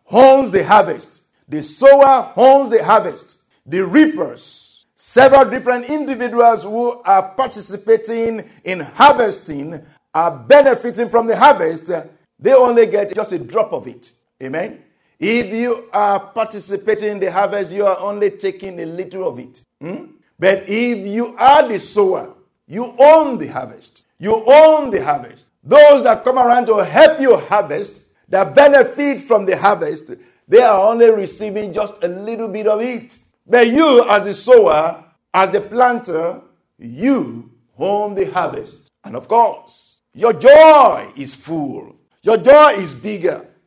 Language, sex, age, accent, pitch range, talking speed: English, male, 50-69, Nigerian, 190-270 Hz, 150 wpm